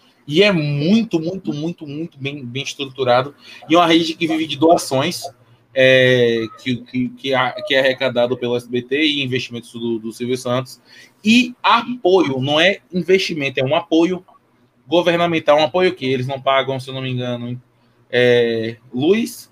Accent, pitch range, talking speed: Brazilian, 130-170 Hz, 155 wpm